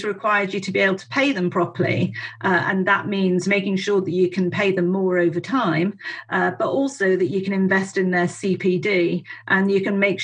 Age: 40-59